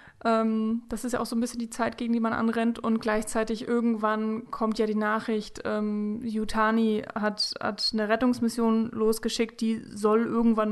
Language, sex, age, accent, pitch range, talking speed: German, female, 20-39, German, 210-230 Hz, 175 wpm